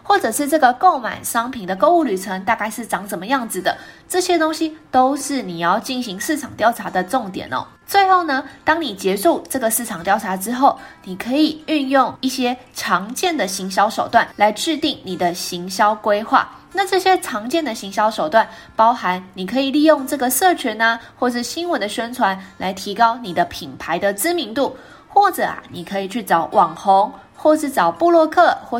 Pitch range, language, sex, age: 200-305 Hz, Chinese, female, 20-39